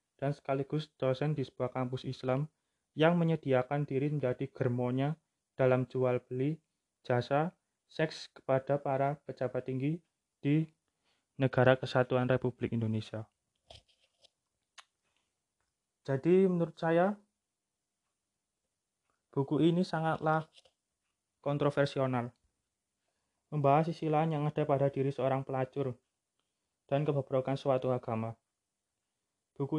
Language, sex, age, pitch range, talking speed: Indonesian, male, 20-39, 115-150 Hz, 90 wpm